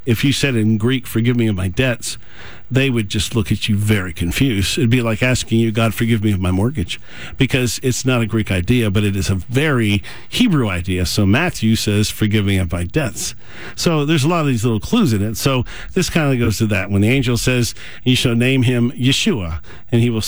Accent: American